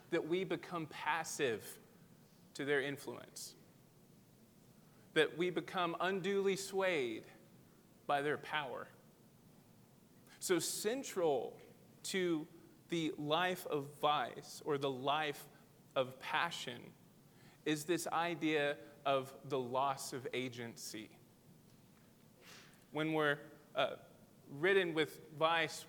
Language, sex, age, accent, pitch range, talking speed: English, male, 20-39, American, 135-170 Hz, 95 wpm